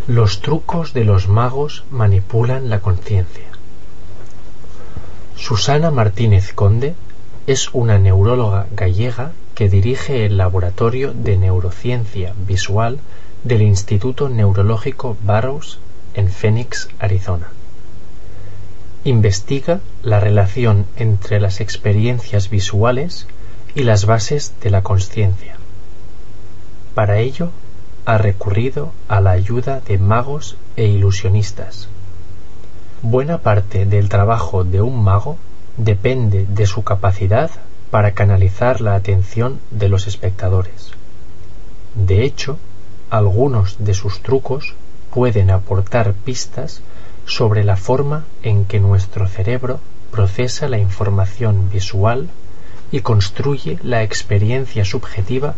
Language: Spanish